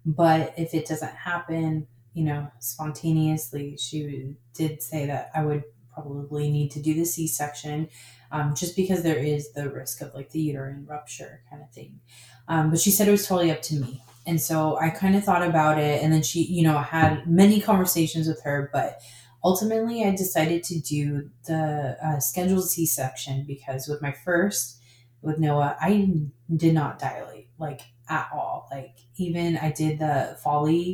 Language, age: English, 20-39